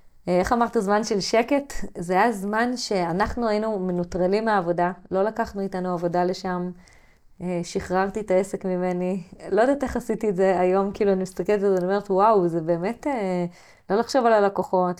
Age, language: 20-39, Hebrew